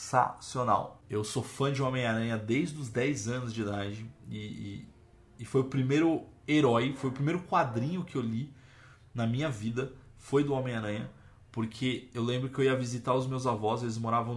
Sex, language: male, Portuguese